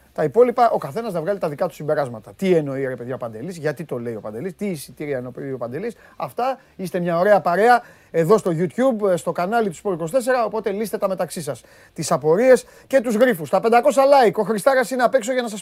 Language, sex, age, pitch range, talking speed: Greek, male, 30-49, 155-205 Hz, 230 wpm